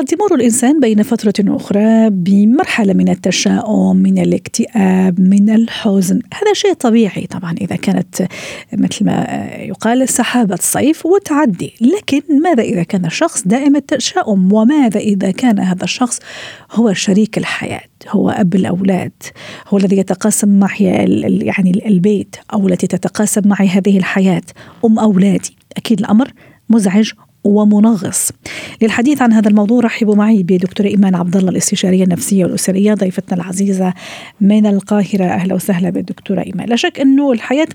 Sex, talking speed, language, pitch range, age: female, 135 wpm, Arabic, 195-250 Hz, 40-59